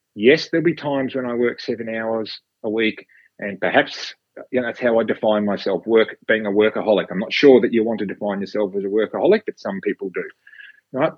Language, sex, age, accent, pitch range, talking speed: English, male, 40-59, Australian, 100-130 Hz, 220 wpm